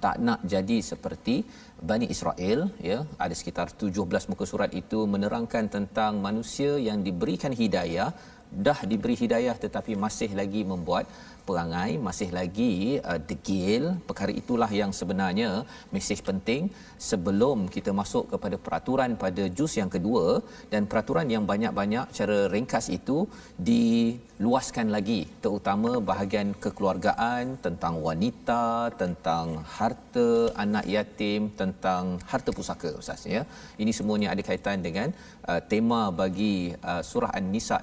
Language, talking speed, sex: Malayalam, 125 wpm, male